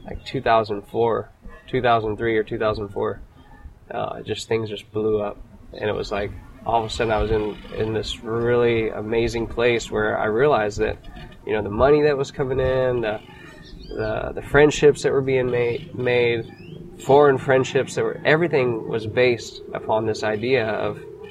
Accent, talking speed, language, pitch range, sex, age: American, 185 wpm, English, 110-130 Hz, male, 20-39